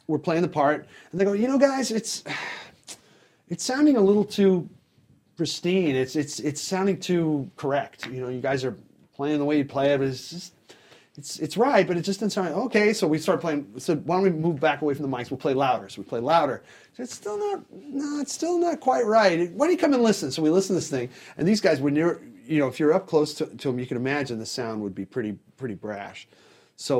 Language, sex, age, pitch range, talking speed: English, male, 30-49, 145-205 Hz, 250 wpm